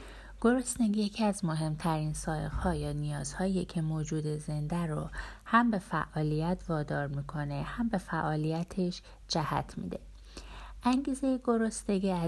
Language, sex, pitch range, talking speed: Persian, female, 150-195 Hz, 110 wpm